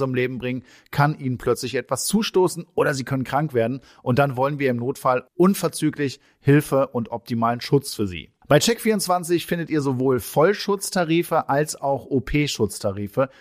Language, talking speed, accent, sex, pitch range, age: German, 150 wpm, German, male, 125-170 Hz, 40-59